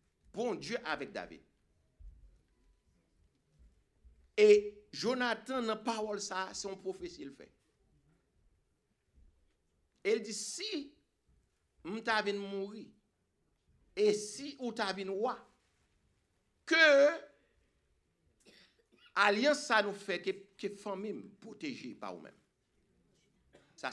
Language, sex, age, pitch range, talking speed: English, male, 60-79, 190-265 Hz, 100 wpm